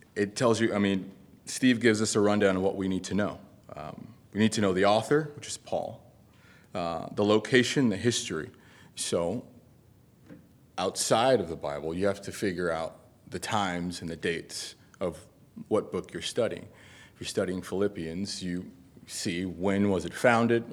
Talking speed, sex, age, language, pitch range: 175 wpm, male, 30-49, English, 95-115 Hz